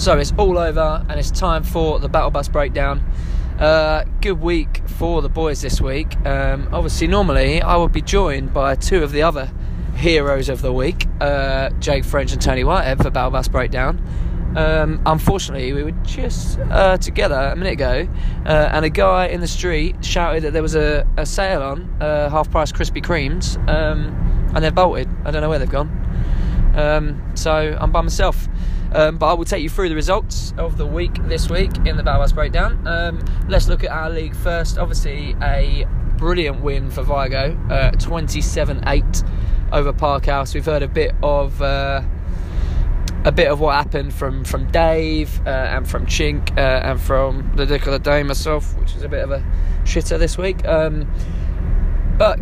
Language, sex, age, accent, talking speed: English, male, 20-39, British, 190 wpm